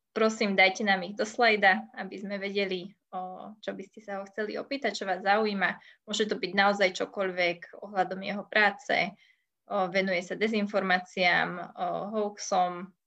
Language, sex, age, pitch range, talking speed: Slovak, female, 20-39, 190-225 Hz, 140 wpm